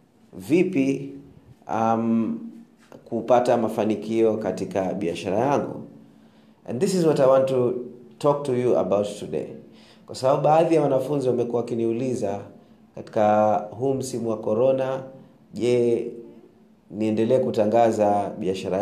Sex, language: male, Swahili